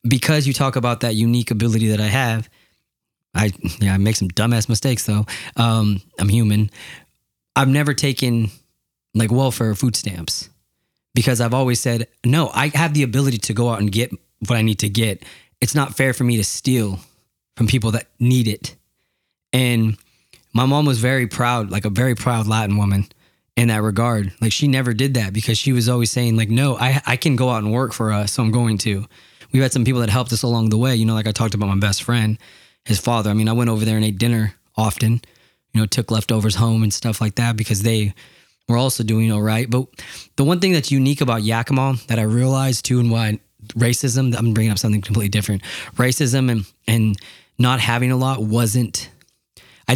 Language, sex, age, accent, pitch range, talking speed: English, male, 20-39, American, 110-125 Hz, 215 wpm